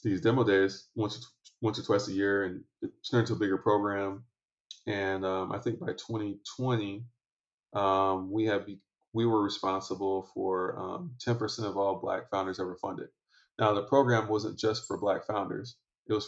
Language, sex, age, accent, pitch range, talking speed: English, male, 20-39, American, 100-120 Hz, 175 wpm